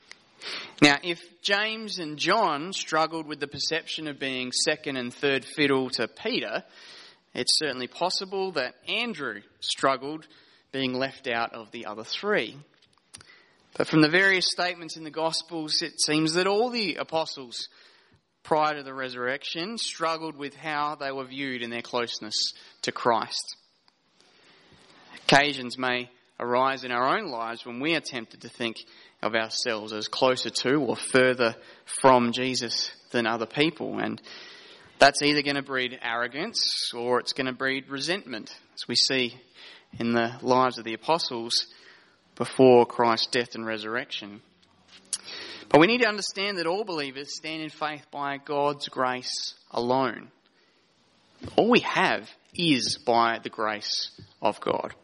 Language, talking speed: English, 145 wpm